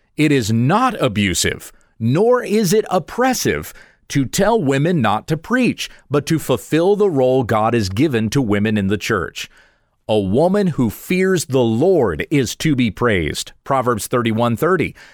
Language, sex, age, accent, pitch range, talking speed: English, male, 40-59, American, 110-160 Hz, 160 wpm